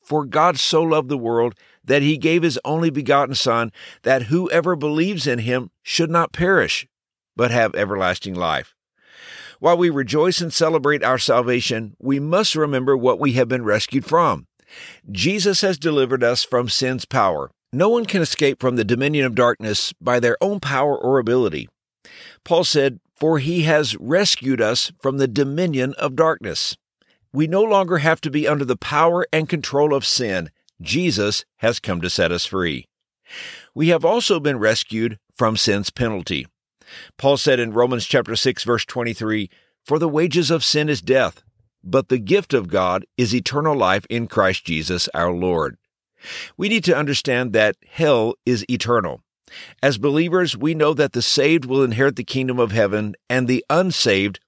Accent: American